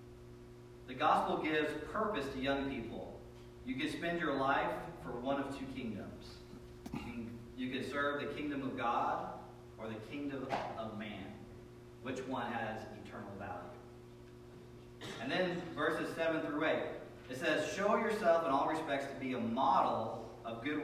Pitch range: 120-145 Hz